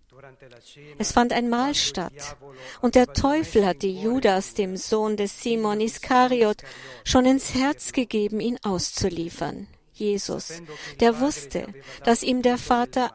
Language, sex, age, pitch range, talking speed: German, female, 50-69, 175-245 Hz, 130 wpm